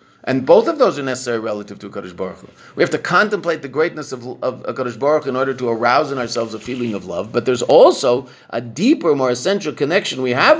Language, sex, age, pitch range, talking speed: English, male, 50-69, 120-190 Hz, 240 wpm